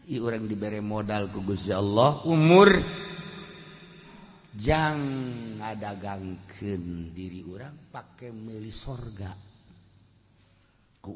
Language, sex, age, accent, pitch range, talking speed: Indonesian, male, 50-69, native, 95-130 Hz, 85 wpm